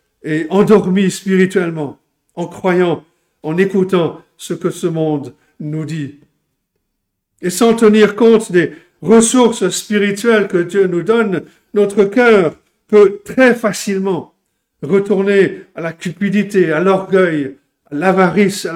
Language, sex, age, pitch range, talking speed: French, male, 50-69, 160-205 Hz, 120 wpm